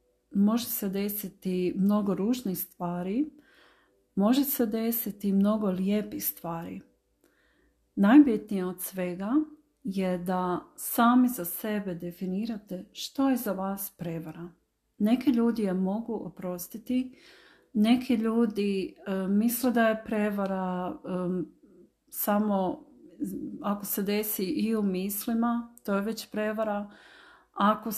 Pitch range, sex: 190-235 Hz, female